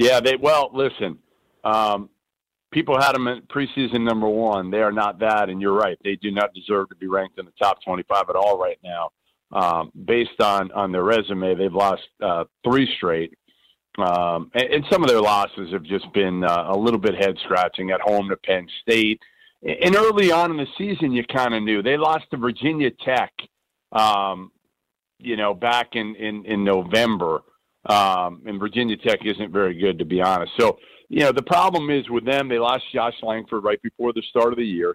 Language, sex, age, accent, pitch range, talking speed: English, male, 50-69, American, 100-140 Hz, 200 wpm